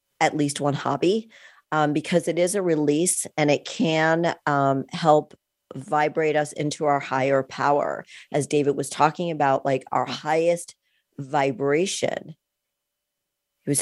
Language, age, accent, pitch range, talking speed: English, 50-69, American, 140-160 Hz, 140 wpm